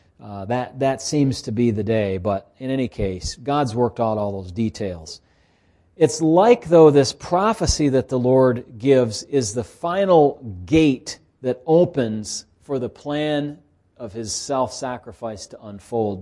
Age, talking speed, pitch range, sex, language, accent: 40-59, 150 wpm, 100-140 Hz, male, English, American